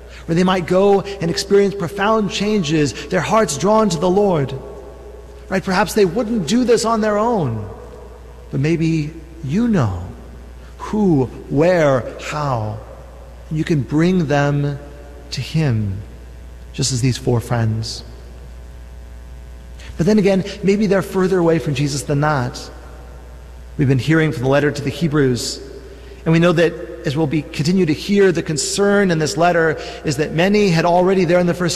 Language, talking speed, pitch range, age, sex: English, 160 wpm, 110-180 Hz, 40-59, male